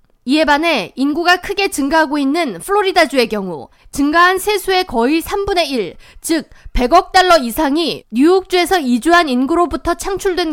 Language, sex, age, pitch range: Korean, female, 20-39, 255-340 Hz